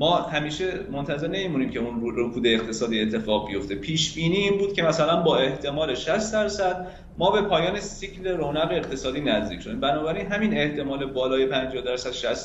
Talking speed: 180 wpm